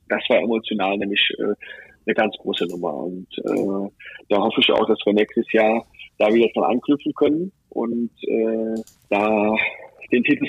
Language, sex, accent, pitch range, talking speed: German, male, German, 110-140 Hz, 165 wpm